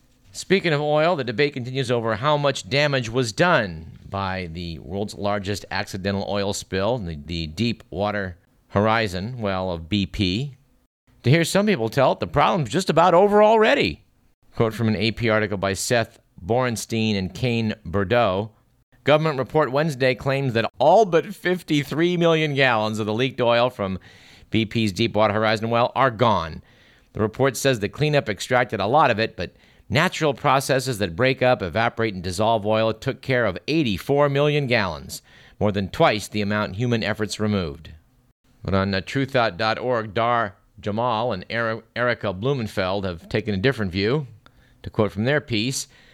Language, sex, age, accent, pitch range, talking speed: English, male, 50-69, American, 100-130 Hz, 160 wpm